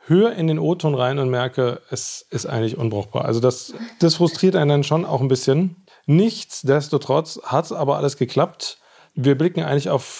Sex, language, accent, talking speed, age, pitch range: male, German, German, 175 wpm, 30-49, 130-160 Hz